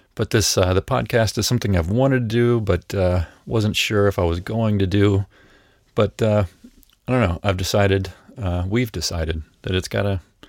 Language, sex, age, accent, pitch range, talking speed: English, male, 40-59, American, 85-100 Hz, 195 wpm